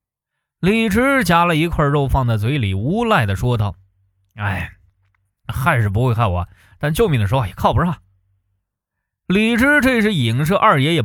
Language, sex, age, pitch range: Chinese, male, 20-39, 100-155 Hz